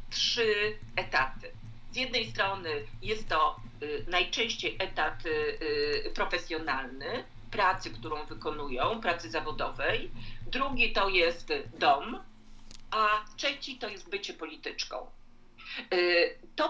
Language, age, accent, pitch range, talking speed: Polish, 50-69, native, 190-255 Hz, 95 wpm